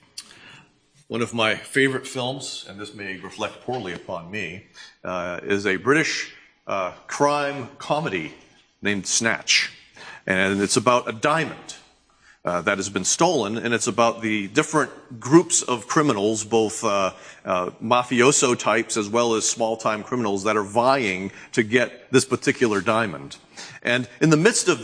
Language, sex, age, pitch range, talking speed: English, male, 40-59, 110-140 Hz, 150 wpm